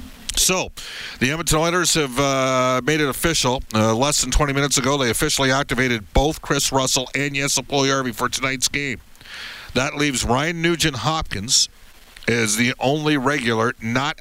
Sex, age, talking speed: male, 50-69, 155 wpm